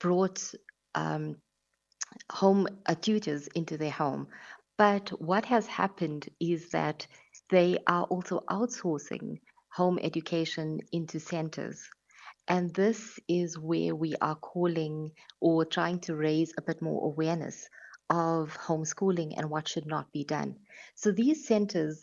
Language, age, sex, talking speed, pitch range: English, 30-49, female, 130 wpm, 160-185 Hz